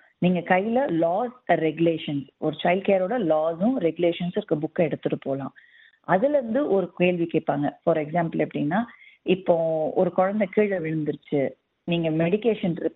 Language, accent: Tamil, native